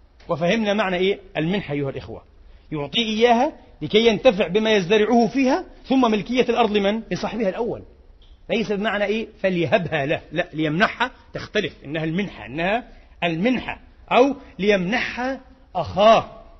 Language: Arabic